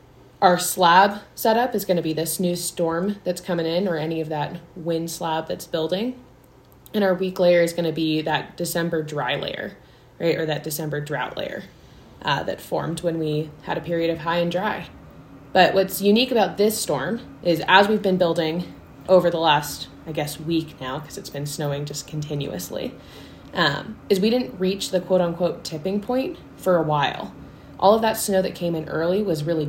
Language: English